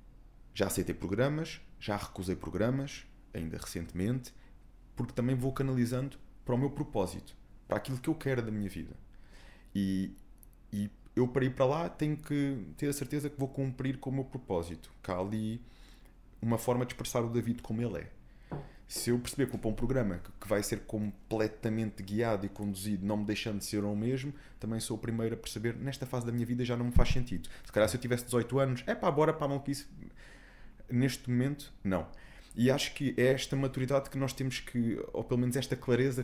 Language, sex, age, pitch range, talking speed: Portuguese, male, 20-39, 100-130 Hz, 205 wpm